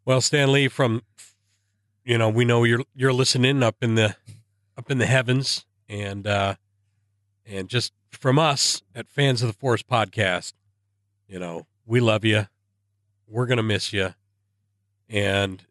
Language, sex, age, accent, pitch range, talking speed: English, male, 40-59, American, 100-115 Hz, 155 wpm